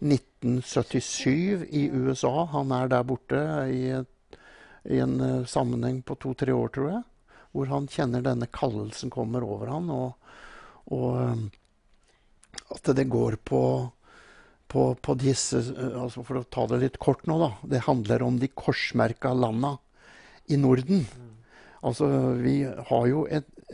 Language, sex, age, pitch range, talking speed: English, male, 60-79, 125-160 Hz, 140 wpm